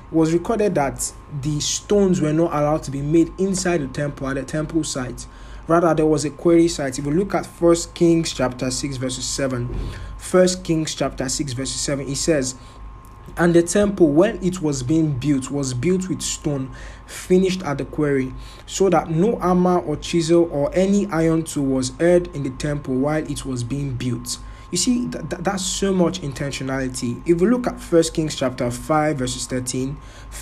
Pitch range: 130-170 Hz